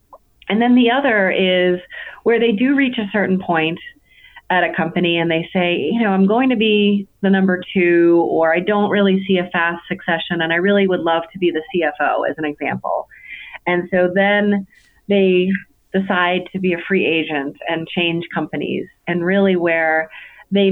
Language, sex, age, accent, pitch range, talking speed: English, female, 30-49, American, 165-195 Hz, 185 wpm